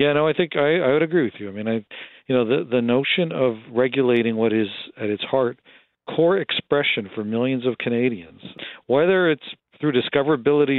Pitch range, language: 110-145 Hz, English